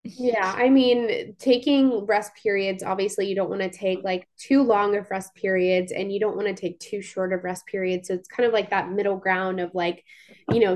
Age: 20-39